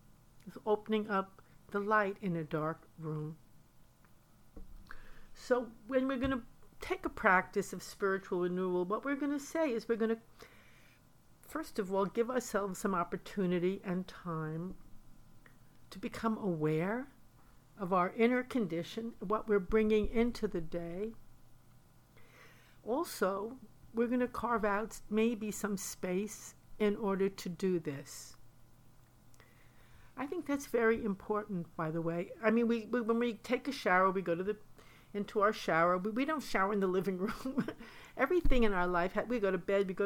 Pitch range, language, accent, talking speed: 180-230 Hz, English, American, 160 wpm